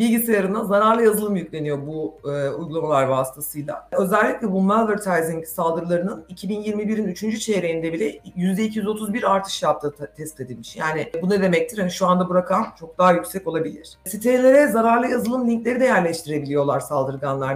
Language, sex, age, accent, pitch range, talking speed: Turkish, female, 50-69, native, 155-200 Hz, 145 wpm